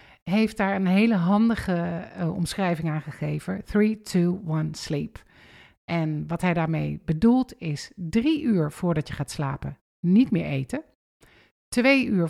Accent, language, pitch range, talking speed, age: Dutch, Dutch, 160-220 Hz, 130 wpm, 50-69